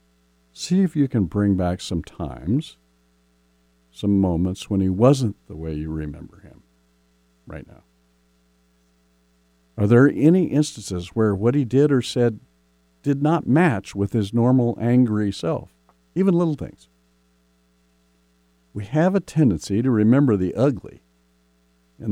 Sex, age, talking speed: male, 50-69, 135 wpm